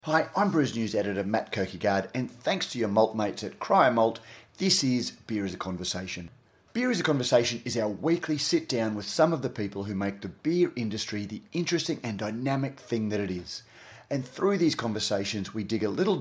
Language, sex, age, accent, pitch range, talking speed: English, male, 30-49, Australian, 105-140 Hz, 205 wpm